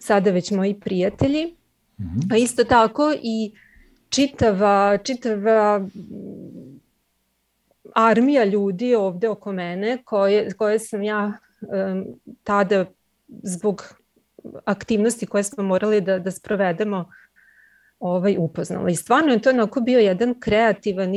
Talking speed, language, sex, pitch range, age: 110 wpm, Croatian, female, 195-240 Hz, 30-49